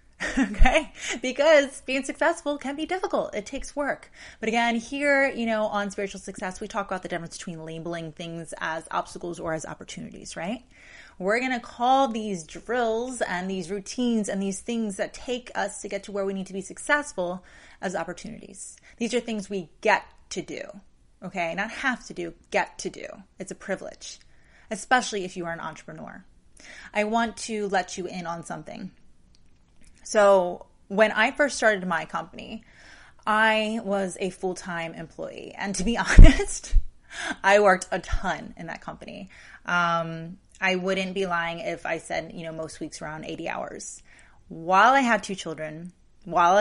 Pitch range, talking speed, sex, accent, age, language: 175-230 Hz, 175 wpm, female, American, 30-49, English